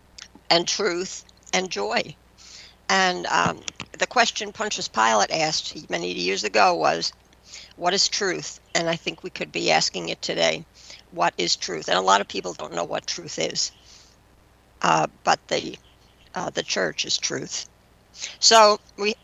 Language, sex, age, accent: English, female, 60-79, American